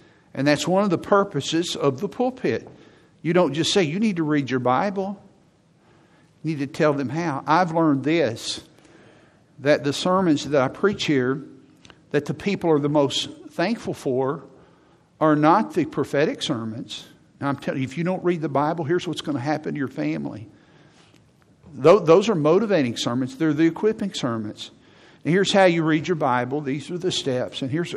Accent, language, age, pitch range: American, English, 50-69, 145-180 Hz